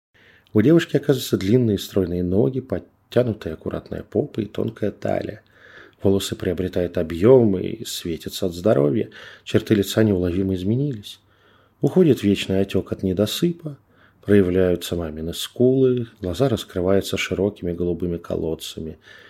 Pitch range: 90-120 Hz